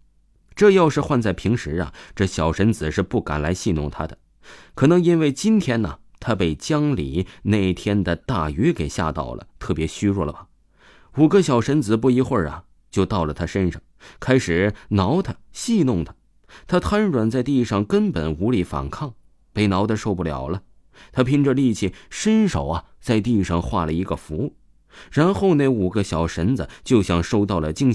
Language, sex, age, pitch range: Chinese, male, 20-39, 85-120 Hz